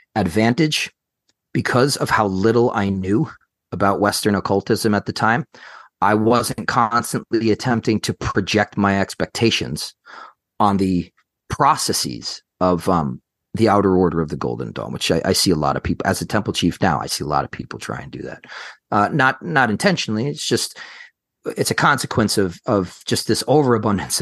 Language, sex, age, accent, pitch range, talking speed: English, male, 40-59, American, 95-115 Hz, 175 wpm